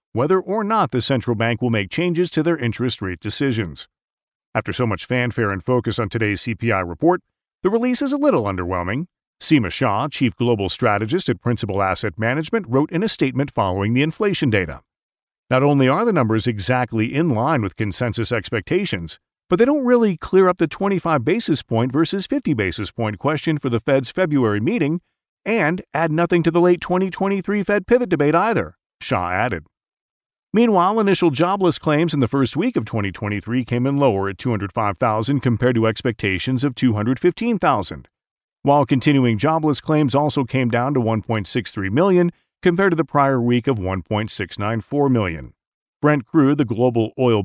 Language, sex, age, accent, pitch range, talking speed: English, male, 50-69, American, 115-170 Hz, 170 wpm